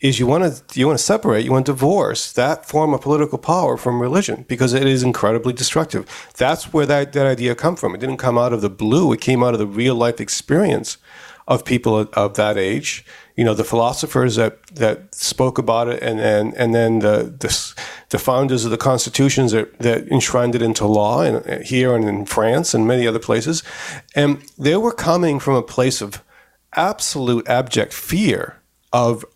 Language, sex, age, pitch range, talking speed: English, male, 40-59, 115-140 Hz, 200 wpm